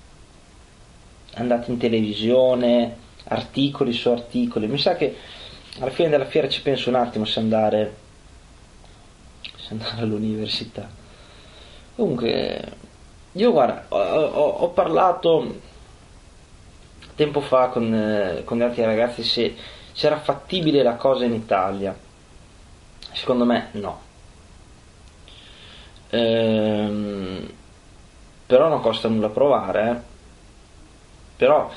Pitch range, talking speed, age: 100-130 Hz, 105 wpm, 20-39